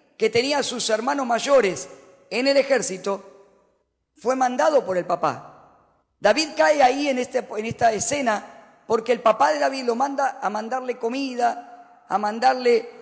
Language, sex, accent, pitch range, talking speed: Spanish, female, Argentinian, 185-260 Hz, 155 wpm